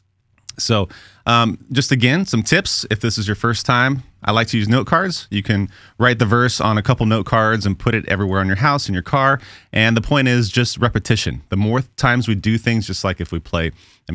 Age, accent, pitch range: 30-49, American, 95-120 Hz